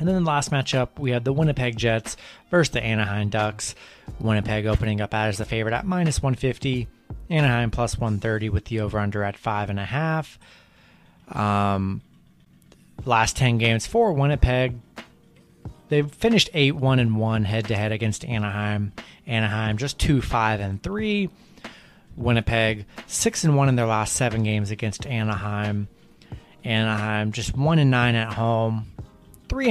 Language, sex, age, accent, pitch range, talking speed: English, male, 30-49, American, 105-125 Hz, 130 wpm